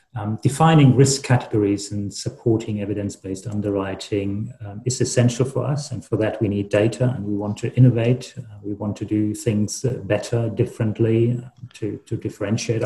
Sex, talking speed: male, 170 wpm